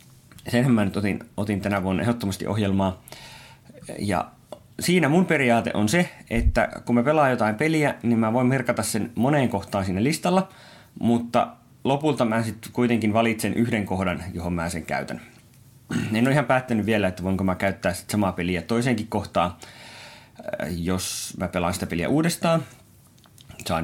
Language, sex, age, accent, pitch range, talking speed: Finnish, male, 30-49, native, 95-125 Hz, 160 wpm